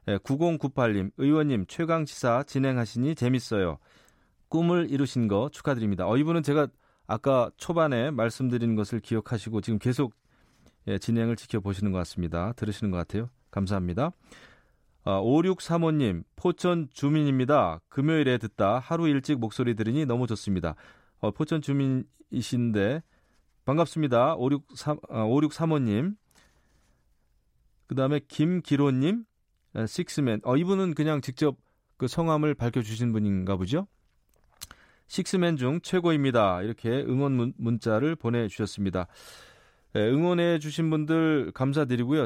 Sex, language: male, Korean